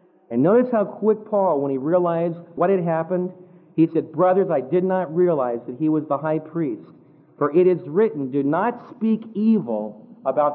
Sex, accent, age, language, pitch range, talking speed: male, American, 50-69, English, 145-220 Hz, 190 wpm